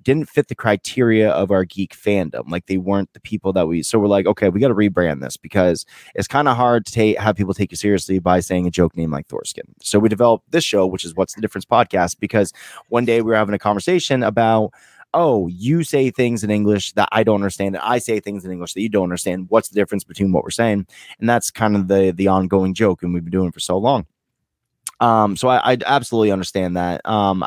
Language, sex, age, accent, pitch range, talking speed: English, male, 20-39, American, 95-120 Hz, 250 wpm